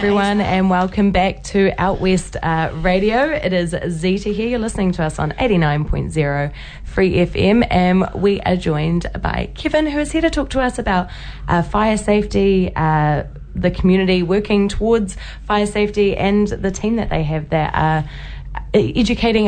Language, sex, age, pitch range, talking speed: English, female, 20-39, 160-210 Hz, 165 wpm